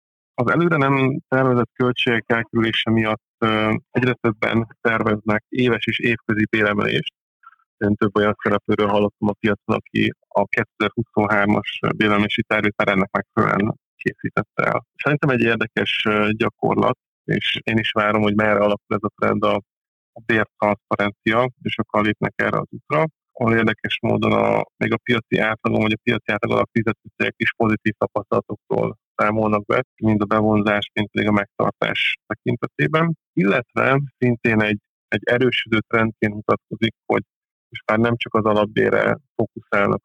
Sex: male